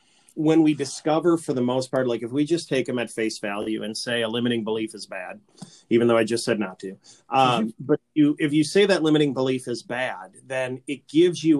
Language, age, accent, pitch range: English, 30-49, American, 120-145 Hz